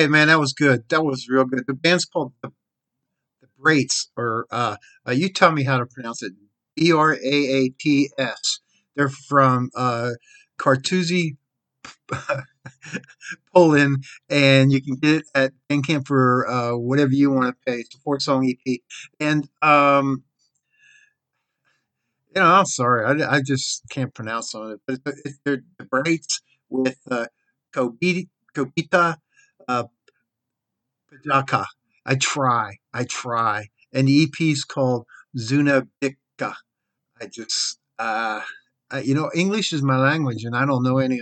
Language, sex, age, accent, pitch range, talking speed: English, male, 50-69, American, 125-145 Hz, 145 wpm